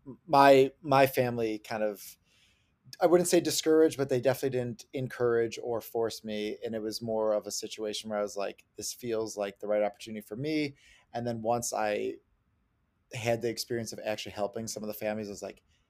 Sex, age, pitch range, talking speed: male, 20-39, 105-120 Hz, 200 wpm